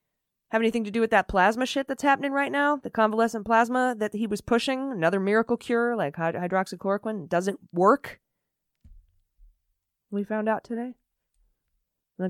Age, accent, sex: 20-39, American, female